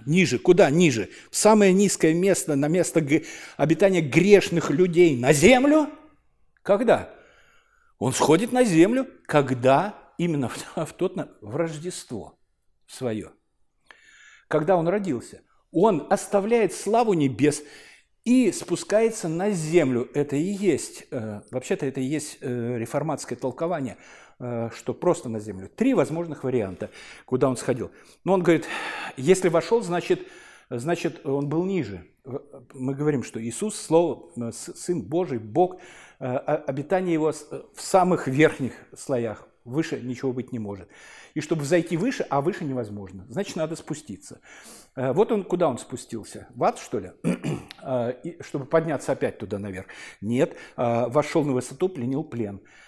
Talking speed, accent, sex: 130 wpm, native, male